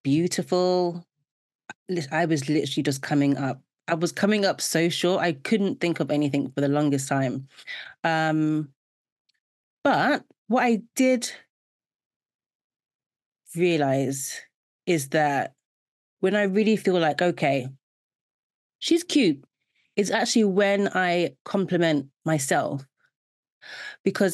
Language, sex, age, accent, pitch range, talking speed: English, female, 30-49, British, 150-195 Hz, 110 wpm